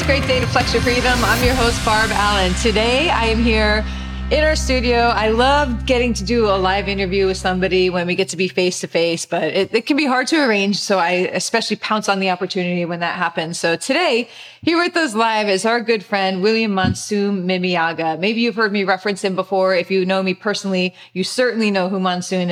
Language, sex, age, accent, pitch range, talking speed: English, female, 30-49, American, 175-220 Hz, 225 wpm